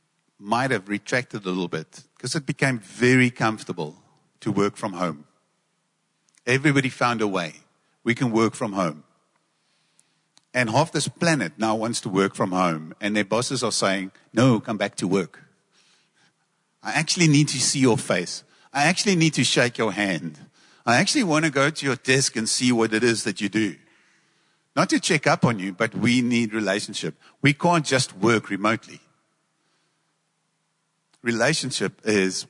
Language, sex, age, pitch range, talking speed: English, male, 50-69, 95-135 Hz, 170 wpm